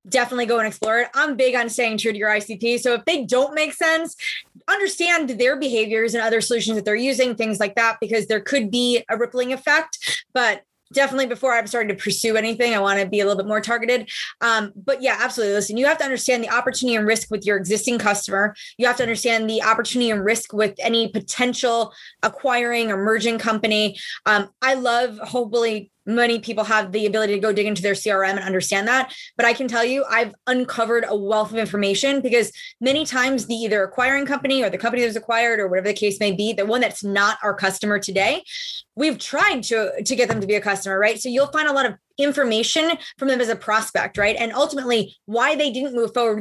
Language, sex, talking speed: English, female, 225 wpm